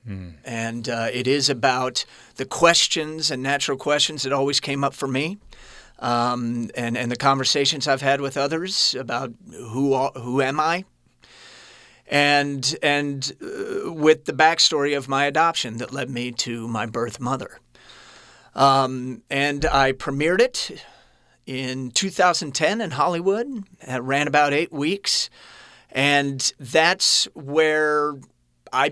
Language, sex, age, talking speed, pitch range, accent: English, male, 40-59, 135 wpm, 120-145 Hz, American